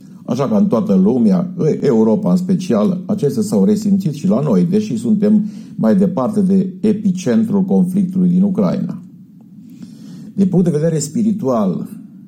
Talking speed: 135 wpm